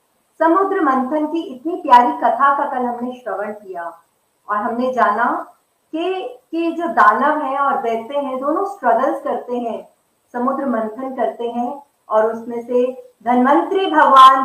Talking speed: 135 wpm